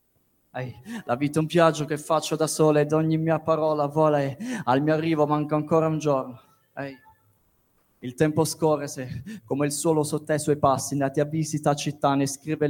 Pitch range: 145-160 Hz